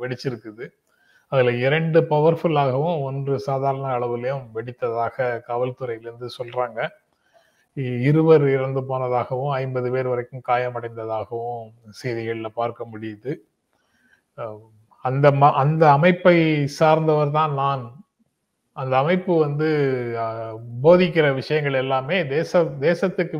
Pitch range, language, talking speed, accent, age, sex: 125-150 Hz, Tamil, 80 wpm, native, 30-49, male